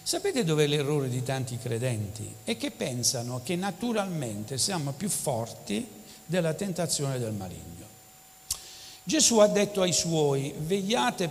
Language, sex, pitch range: Italian, male, 150-215 Hz